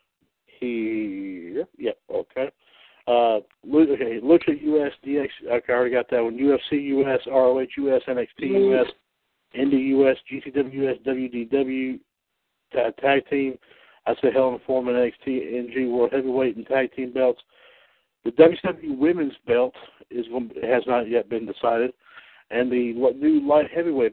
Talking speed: 140 wpm